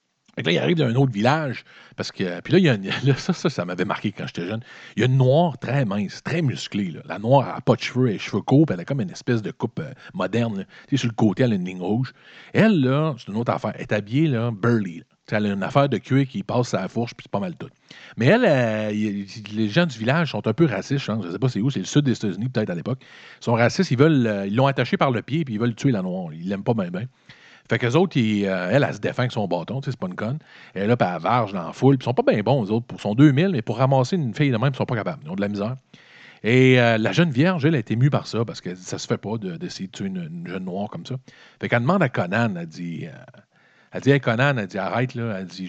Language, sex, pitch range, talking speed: French, male, 110-140 Hz, 325 wpm